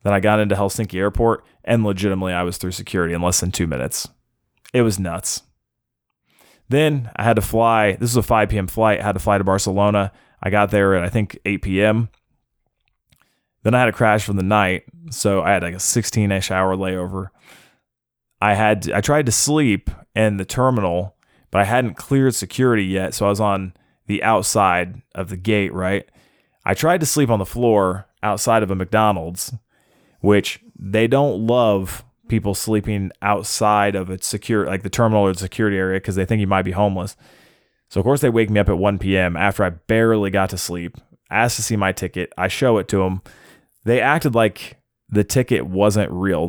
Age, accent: 20-39, American